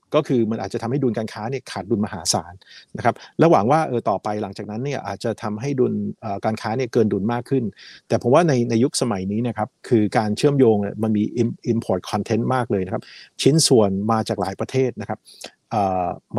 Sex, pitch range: male, 105-130 Hz